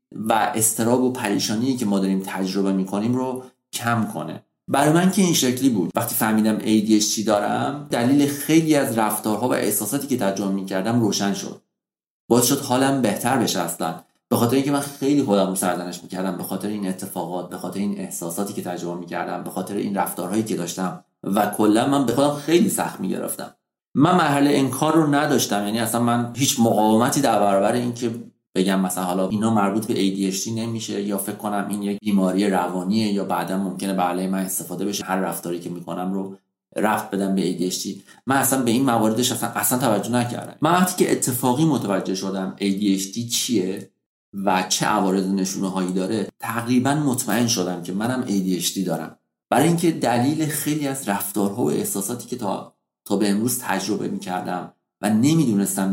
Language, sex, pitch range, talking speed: Persian, male, 95-125 Hz, 175 wpm